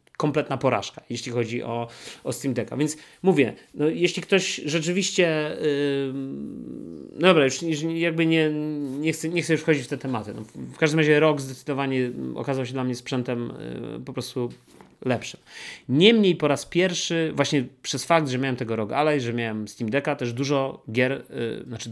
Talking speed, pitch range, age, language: 180 wpm, 115-150 Hz, 30-49, Polish